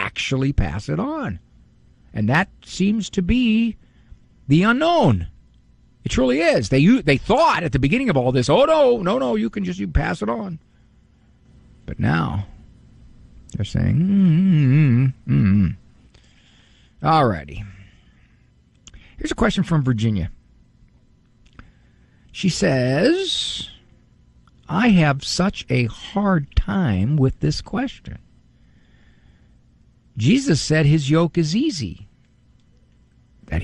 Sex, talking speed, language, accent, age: male, 120 wpm, English, American, 50-69